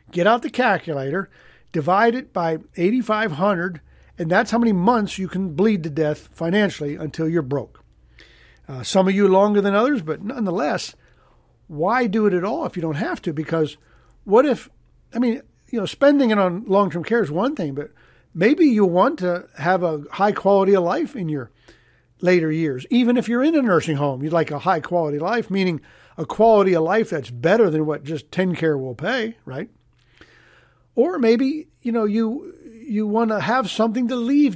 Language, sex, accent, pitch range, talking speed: English, male, American, 155-230 Hz, 195 wpm